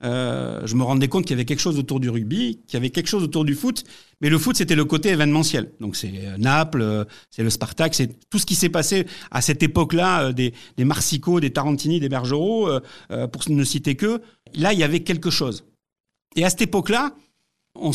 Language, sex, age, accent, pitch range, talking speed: French, male, 50-69, French, 125-175 Hz, 220 wpm